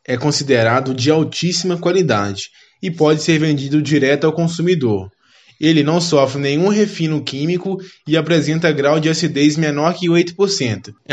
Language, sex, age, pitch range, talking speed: Portuguese, male, 20-39, 140-175 Hz, 140 wpm